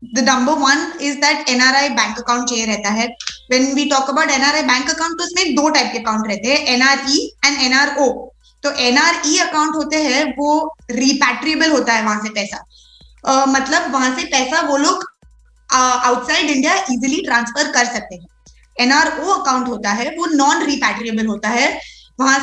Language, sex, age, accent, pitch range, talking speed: Hindi, female, 20-39, native, 250-310 Hz, 165 wpm